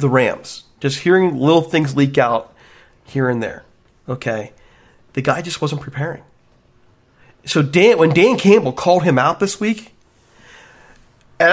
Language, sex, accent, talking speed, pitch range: English, male, American, 145 wpm, 130-165 Hz